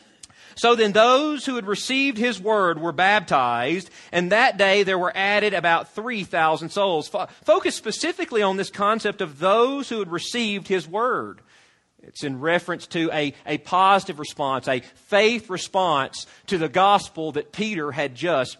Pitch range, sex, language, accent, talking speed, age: 175-240 Hz, male, English, American, 160 wpm, 40-59